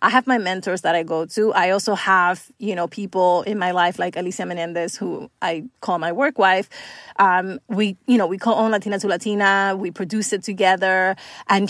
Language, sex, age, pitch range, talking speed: English, female, 30-49, 190-245 Hz, 210 wpm